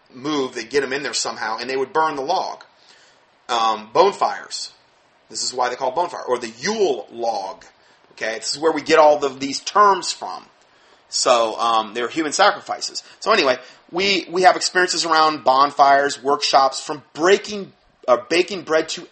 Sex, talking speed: male, 180 wpm